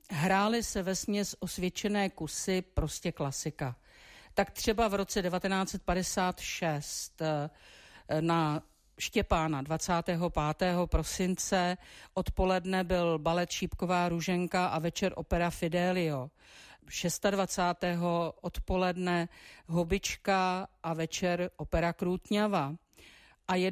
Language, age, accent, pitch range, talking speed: Czech, 50-69, native, 165-195 Hz, 85 wpm